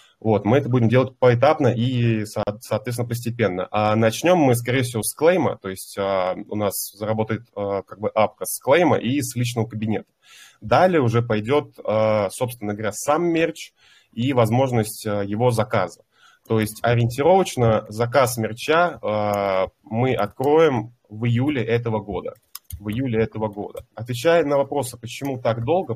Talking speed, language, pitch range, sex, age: 155 wpm, Russian, 105-130 Hz, male, 20-39